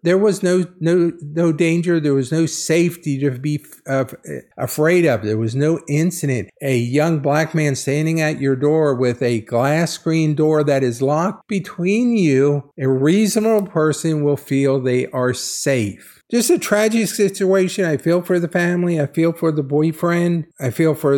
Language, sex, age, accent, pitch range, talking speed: English, male, 50-69, American, 115-160 Hz, 175 wpm